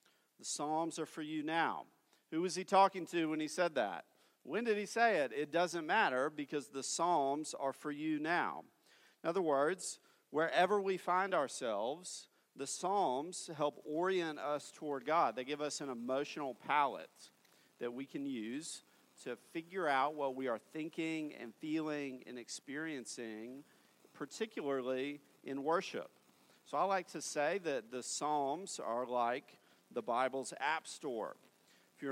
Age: 40-59